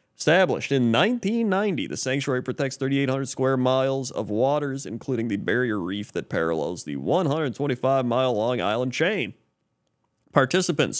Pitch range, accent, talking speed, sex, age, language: 115-155 Hz, American, 125 wpm, male, 30-49, English